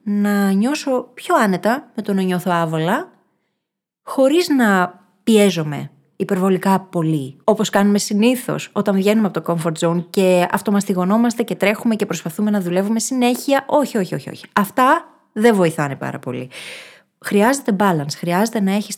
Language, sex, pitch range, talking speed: Greek, female, 180-230 Hz, 145 wpm